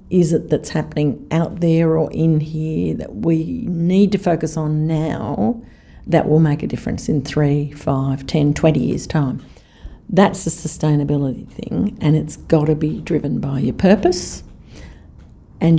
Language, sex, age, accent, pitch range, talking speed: English, female, 50-69, Australian, 150-180 Hz, 155 wpm